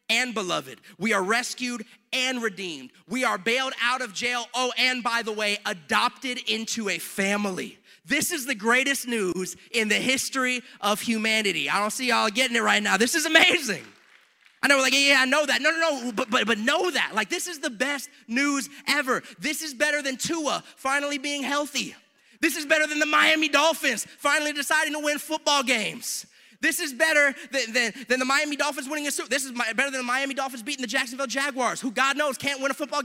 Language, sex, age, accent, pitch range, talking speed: English, male, 30-49, American, 235-295 Hz, 210 wpm